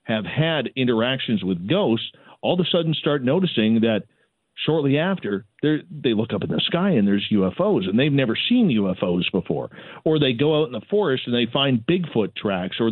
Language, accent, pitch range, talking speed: English, American, 115-160 Hz, 195 wpm